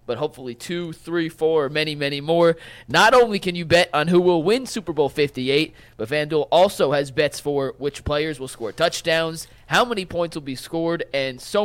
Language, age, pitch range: English, 20-39, 140-175 Hz